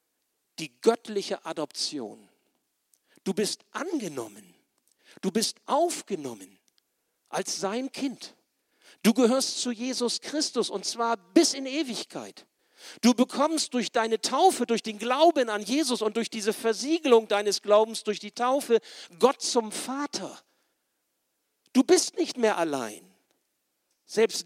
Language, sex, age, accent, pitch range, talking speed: German, male, 50-69, German, 185-260 Hz, 125 wpm